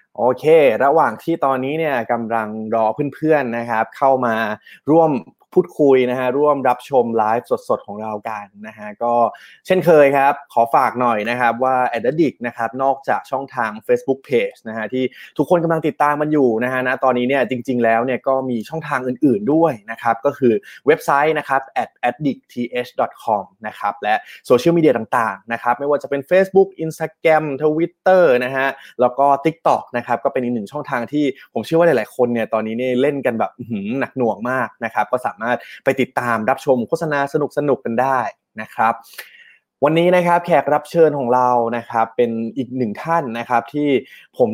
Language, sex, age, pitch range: Thai, male, 20-39, 120-150 Hz